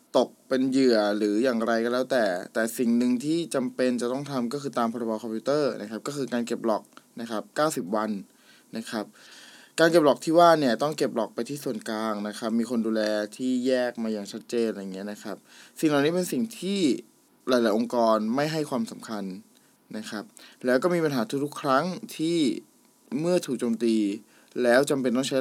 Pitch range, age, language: 115-145 Hz, 20-39, Thai